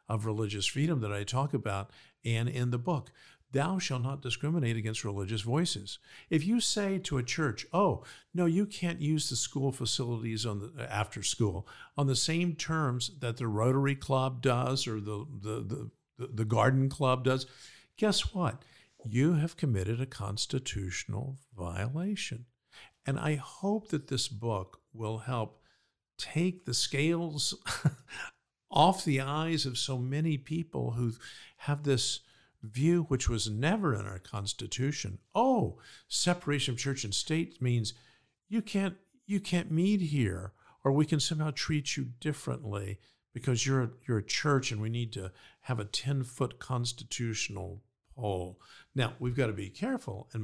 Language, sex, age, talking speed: English, male, 50-69, 155 wpm